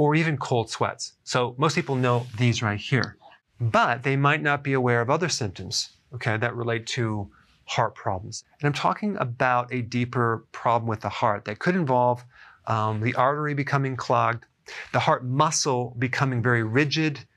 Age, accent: 40-59, American